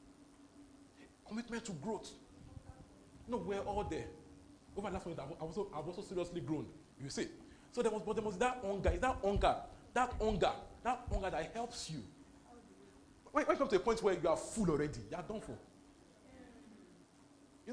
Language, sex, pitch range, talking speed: English, male, 160-230 Hz, 175 wpm